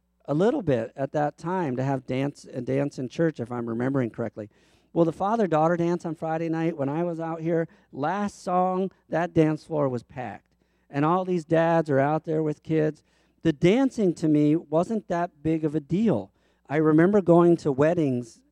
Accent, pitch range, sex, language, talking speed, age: American, 130-170 Hz, male, English, 195 wpm, 50-69